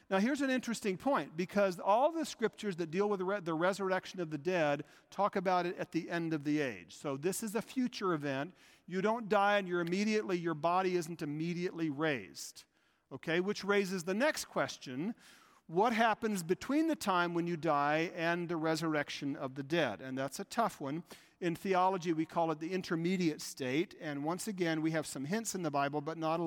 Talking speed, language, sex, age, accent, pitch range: 205 wpm, English, male, 50-69, American, 155-205 Hz